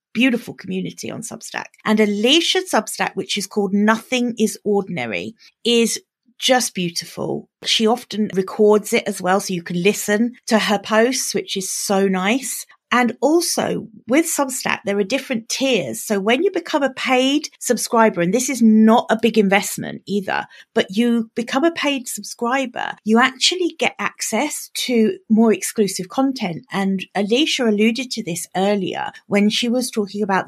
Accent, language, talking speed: British, English, 160 wpm